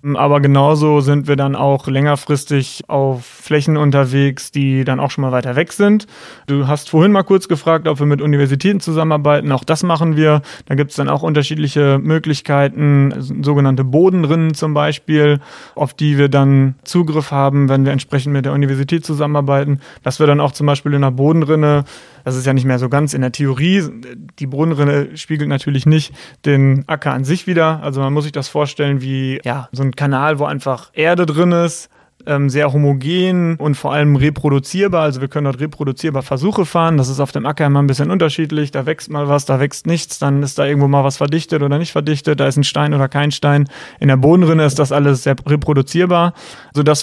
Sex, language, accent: male, German, German